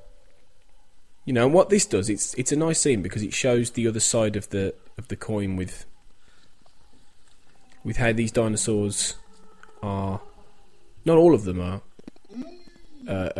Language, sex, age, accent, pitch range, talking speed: English, male, 20-39, British, 95-120 Hz, 150 wpm